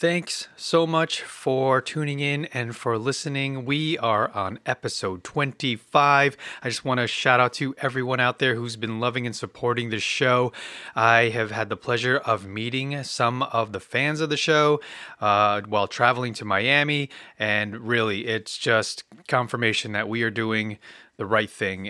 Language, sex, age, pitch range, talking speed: English, male, 30-49, 105-135 Hz, 170 wpm